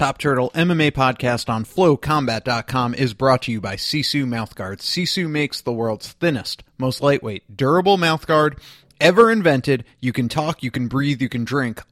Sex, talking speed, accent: male, 165 wpm, American